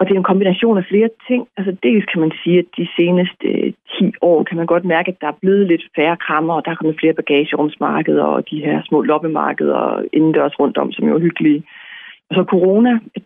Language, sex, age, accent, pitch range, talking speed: Danish, female, 30-49, native, 170-210 Hz, 230 wpm